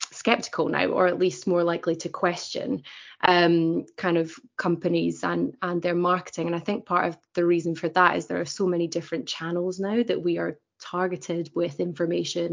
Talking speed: 190 wpm